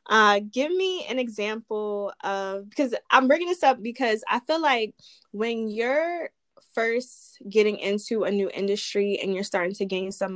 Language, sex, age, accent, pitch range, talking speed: English, female, 20-39, American, 195-245 Hz, 170 wpm